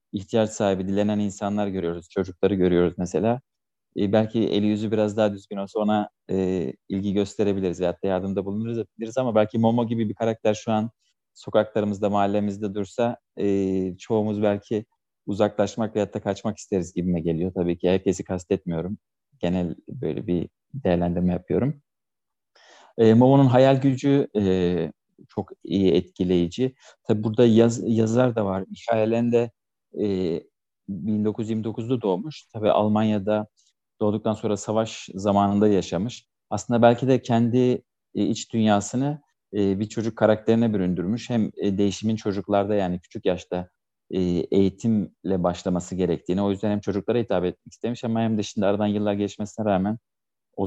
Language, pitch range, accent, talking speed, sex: Turkish, 95-110 Hz, native, 135 wpm, male